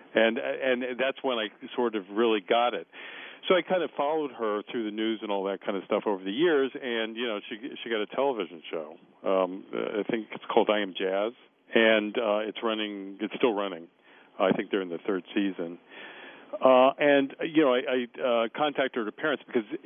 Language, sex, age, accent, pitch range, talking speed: English, male, 50-69, American, 100-120 Hz, 210 wpm